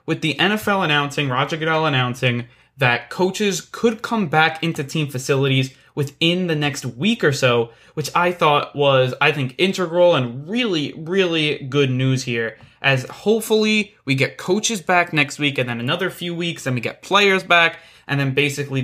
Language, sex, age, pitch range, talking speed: English, male, 20-39, 125-155 Hz, 175 wpm